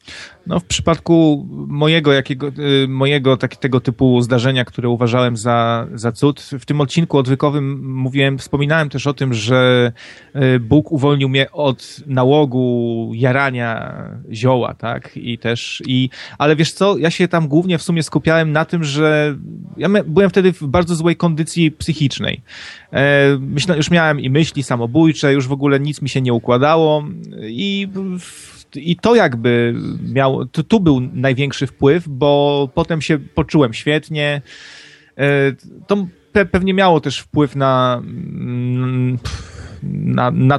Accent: native